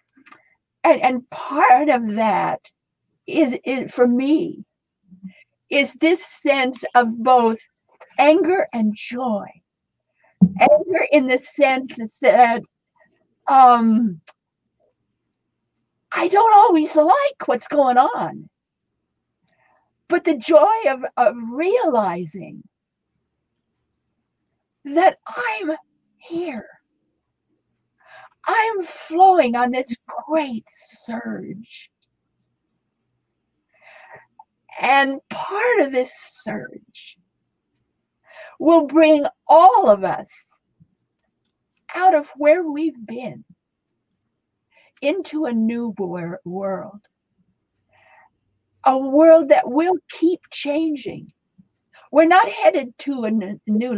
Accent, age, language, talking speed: American, 50-69, English, 85 wpm